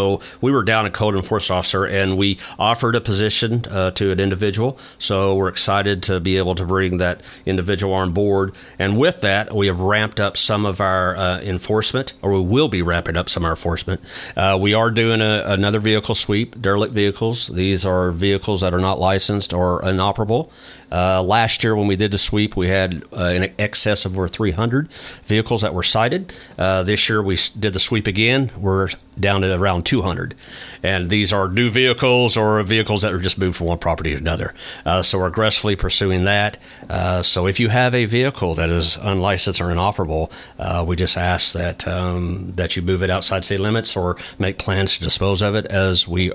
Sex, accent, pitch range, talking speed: male, American, 90-105 Hz, 205 wpm